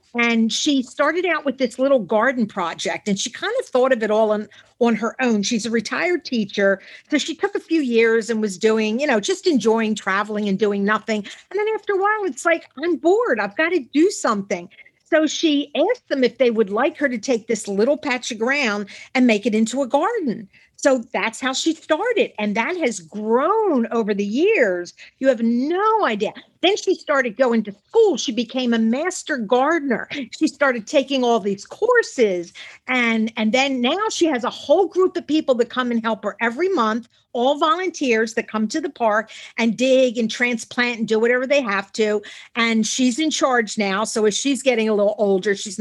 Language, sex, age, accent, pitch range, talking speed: English, female, 50-69, American, 220-300 Hz, 210 wpm